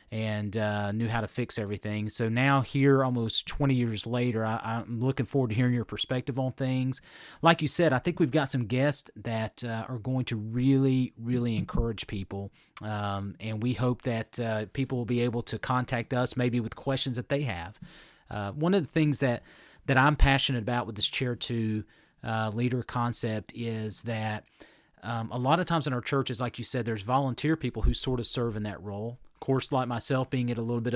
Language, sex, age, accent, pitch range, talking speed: English, male, 30-49, American, 115-135 Hz, 210 wpm